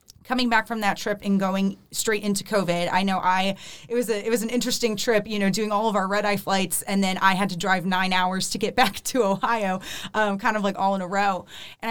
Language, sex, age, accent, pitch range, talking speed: English, female, 20-39, American, 180-215 Hz, 260 wpm